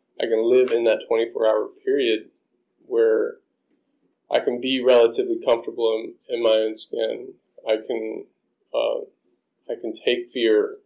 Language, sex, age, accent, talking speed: English, male, 20-39, American, 145 wpm